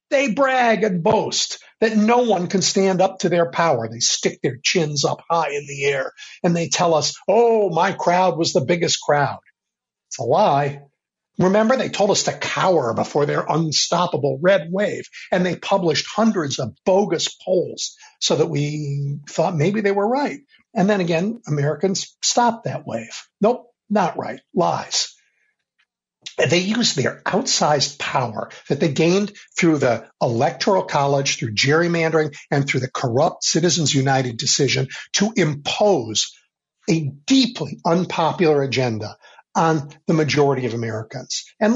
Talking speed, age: 150 wpm, 60-79